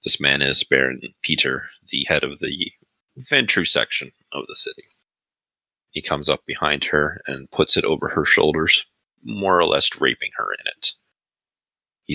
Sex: male